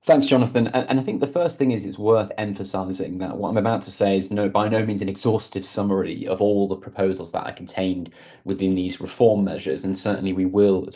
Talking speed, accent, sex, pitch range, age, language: 235 wpm, British, male, 95-105 Hz, 30-49, English